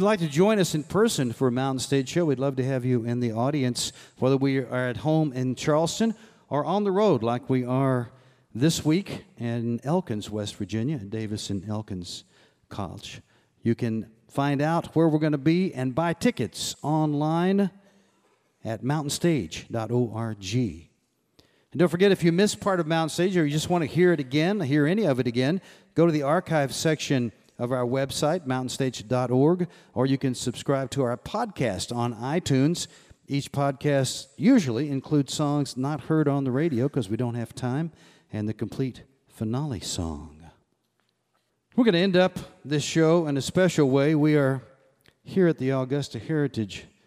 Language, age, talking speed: English, 50-69, 175 wpm